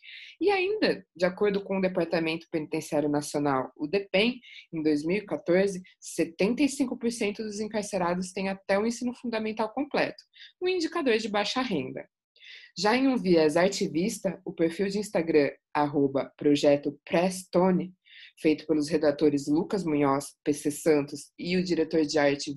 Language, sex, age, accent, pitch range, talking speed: Portuguese, female, 20-39, Brazilian, 155-220 Hz, 140 wpm